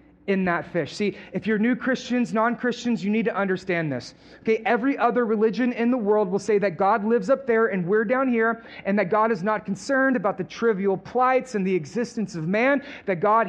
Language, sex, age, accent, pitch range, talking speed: English, male, 30-49, American, 230-285 Hz, 220 wpm